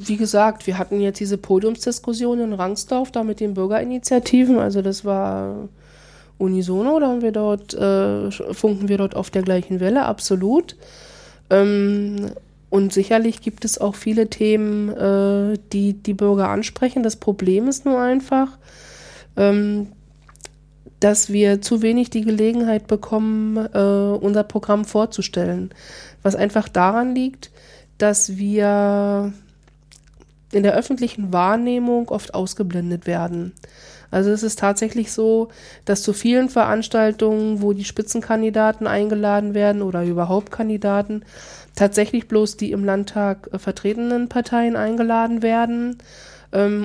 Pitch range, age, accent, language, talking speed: 195-225 Hz, 20-39, German, German, 130 wpm